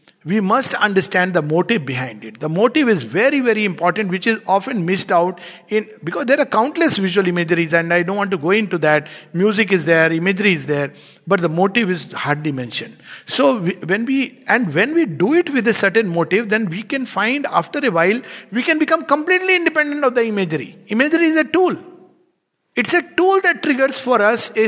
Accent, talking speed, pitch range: Indian, 205 wpm, 175-260 Hz